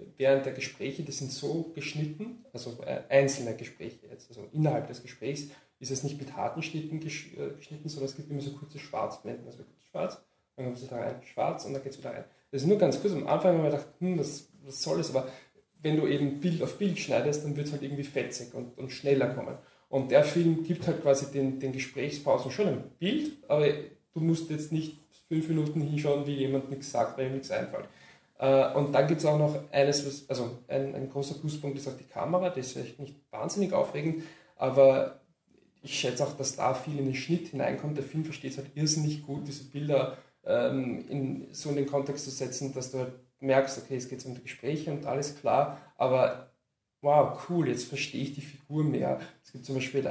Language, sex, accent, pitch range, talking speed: German, male, German, 135-150 Hz, 220 wpm